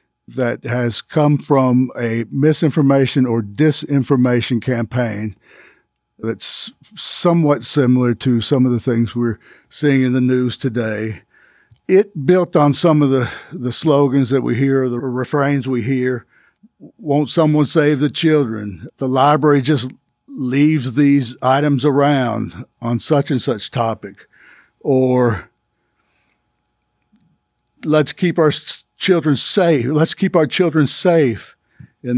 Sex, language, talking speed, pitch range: male, English, 125 wpm, 120-150 Hz